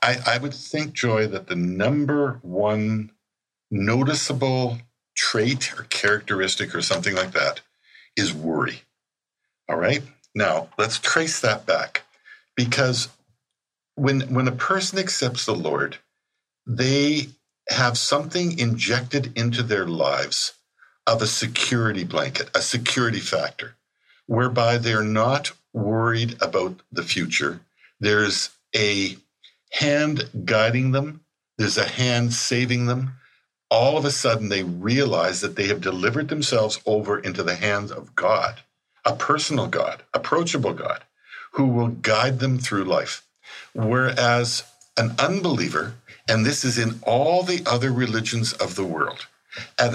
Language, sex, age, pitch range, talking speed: English, male, 60-79, 110-135 Hz, 130 wpm